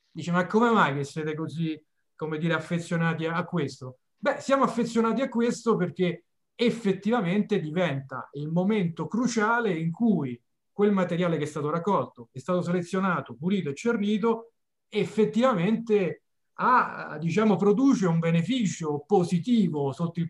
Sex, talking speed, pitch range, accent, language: male, 140 wpm, 160-210 Hz, native, Italian